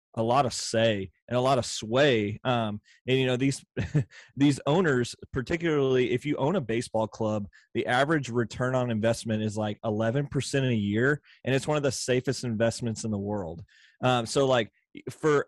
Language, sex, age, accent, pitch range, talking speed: English, male, 30-49, American, 115-140 Hz, 185 wpm